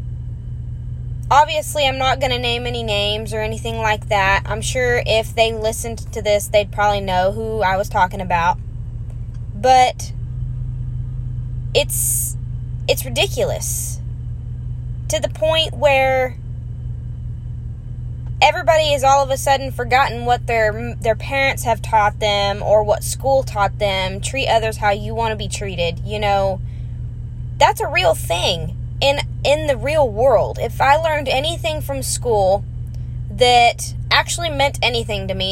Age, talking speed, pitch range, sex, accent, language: 20-39, 145 wpm, 120-140 Hz, female, American, English